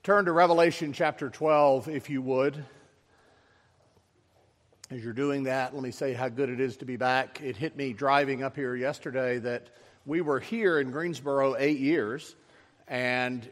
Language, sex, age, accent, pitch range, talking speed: English, male, 50-69, American, 120-150 Hz, 170 wpm